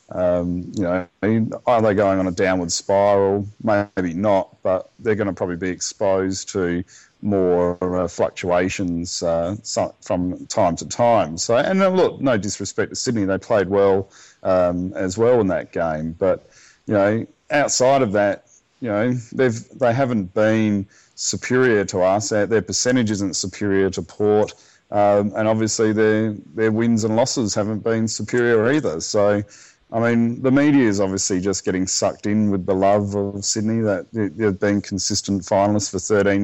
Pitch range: 95-110 Hz